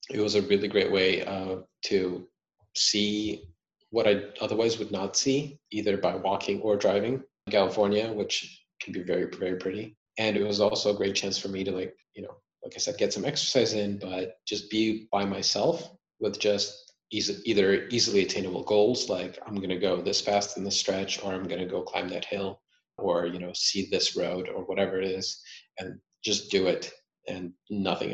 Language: English